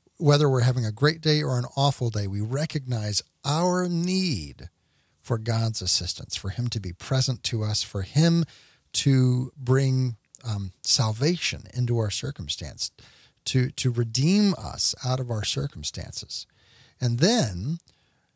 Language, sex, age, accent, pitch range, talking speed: English, male, 50-69, American, 105-145 Hz, 140 wpm